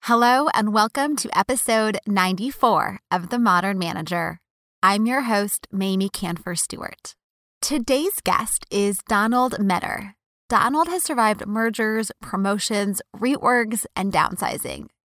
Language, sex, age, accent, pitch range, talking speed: English, female, 20-39, American, 185-230 Hz, 115 wpm